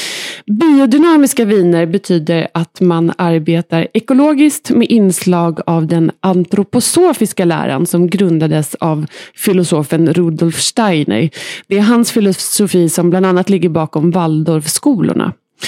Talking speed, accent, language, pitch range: 110 wpm, native, Swedish, 170-235 Hz